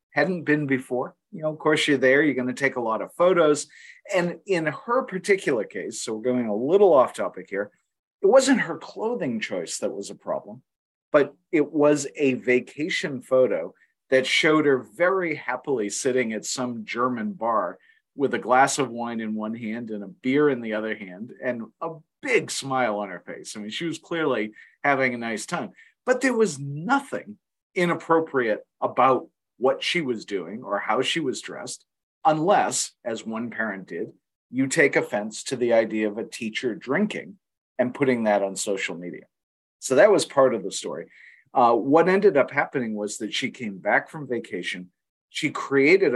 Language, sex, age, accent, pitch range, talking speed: English, male, 40-59, American, 120-170 Hz, 185 wpm